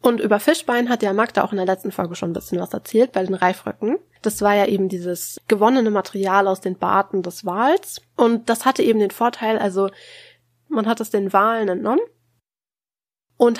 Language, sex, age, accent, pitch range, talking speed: German, female, 20-39, German, 185-235 Hz, 200 wpm